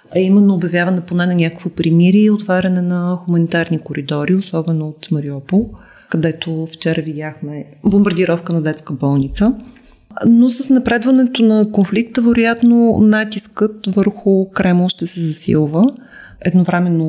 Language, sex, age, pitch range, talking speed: Bulgarian, female, 30-49, 170-220 Hz, 125 wpm